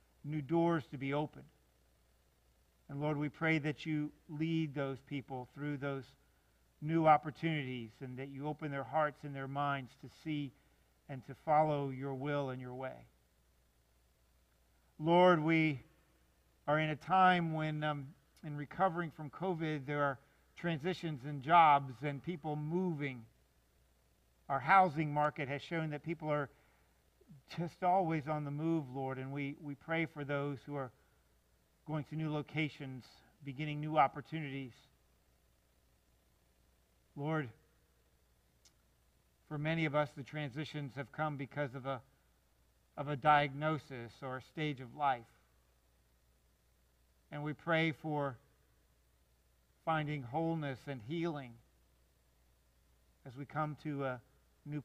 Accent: American